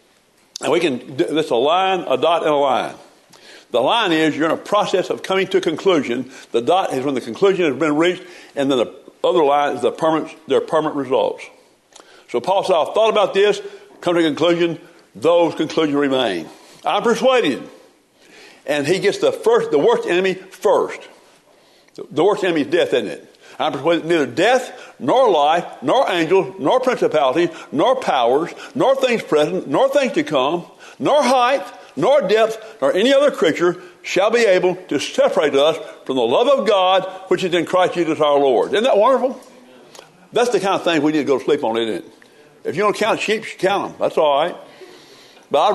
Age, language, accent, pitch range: 60-79, English, American, 170-275 Hz